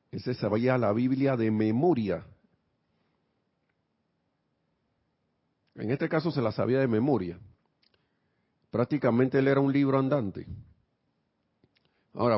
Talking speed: 105 wpm